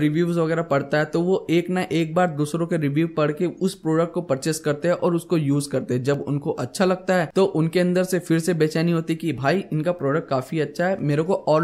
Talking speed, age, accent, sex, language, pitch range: 150 wpm, 10-29, native, male, Hindi, 140-170 Hz